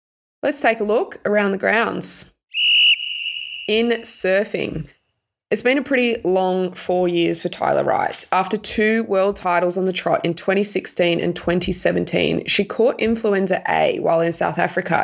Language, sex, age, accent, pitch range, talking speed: English, female, 20-39, Australian, 175-200 Hz, 150 wpm